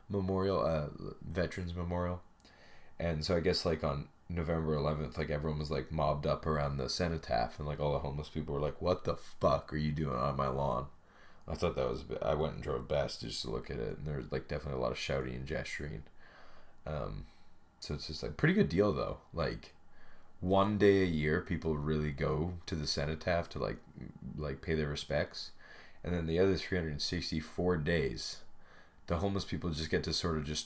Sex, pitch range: male, 75-90 Hz